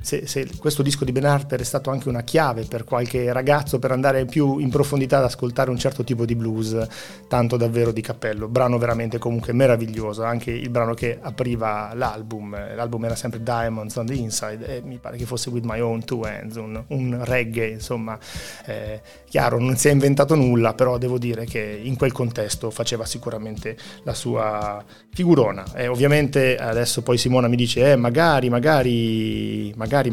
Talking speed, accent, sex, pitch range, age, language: 185 wpm, native, male, 115-140 Hz, 30-49, Italian